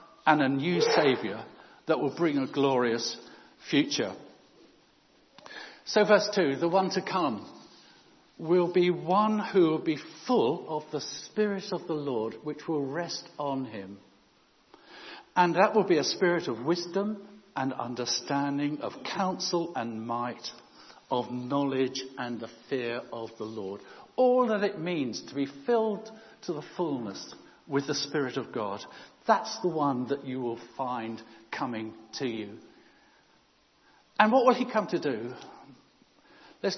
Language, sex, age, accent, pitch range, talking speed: English, male, 60-79, British, 130-185 Hz, 145 wpm